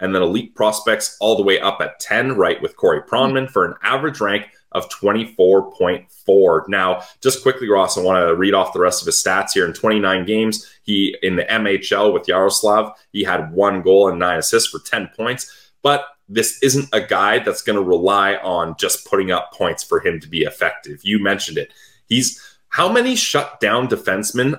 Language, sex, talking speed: English, male, 200 wpm